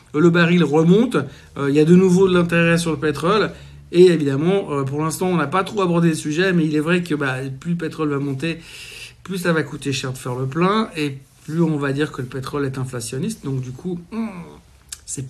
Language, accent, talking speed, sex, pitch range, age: French, French, 230 wpm, male, 145-175 Hz, 60-79